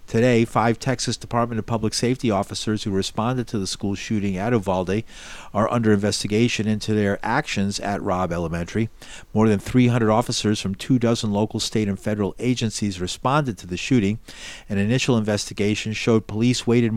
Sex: male